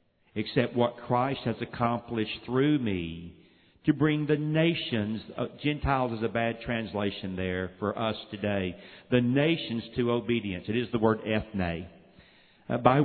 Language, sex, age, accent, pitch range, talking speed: English, male, 50-69, American, 110-135 Hz, 145 wpm